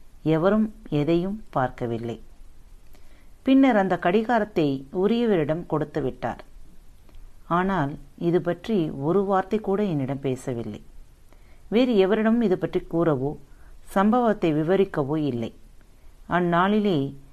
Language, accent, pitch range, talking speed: Tamil, native, 135-195 Hz, 85 wpm